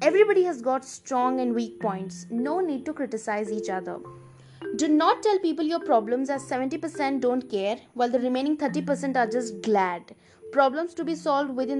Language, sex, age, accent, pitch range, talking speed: Hindi, female, 20-39, native, 215-280 Hz, 190 wpm